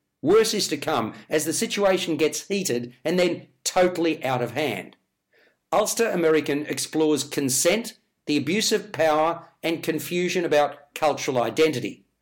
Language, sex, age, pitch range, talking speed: English, male, 50-69, 150-180 Hz, 135 wpm